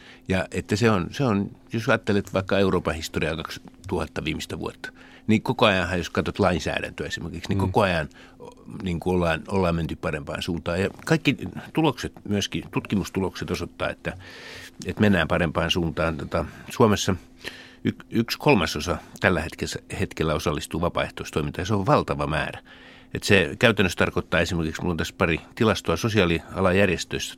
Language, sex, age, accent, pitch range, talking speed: Finnish, male, 60-79, native, 85-100 Hz, 140 wpm